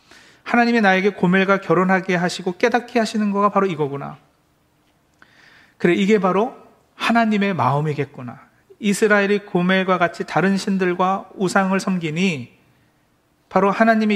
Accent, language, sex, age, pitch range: native, Korean, male, 40-59, 170-215 Hz